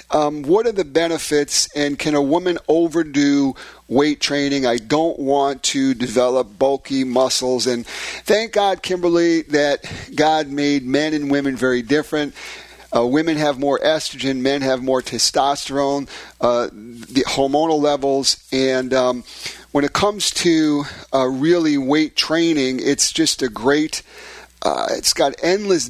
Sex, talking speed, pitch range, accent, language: male, 145 wpm, 135-175 Hz, American, English